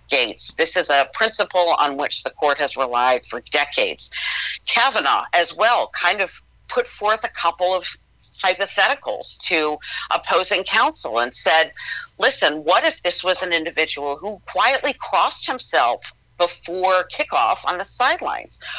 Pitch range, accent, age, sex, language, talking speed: 155-225 Hz, American, 50-69, female, English, 140 wpm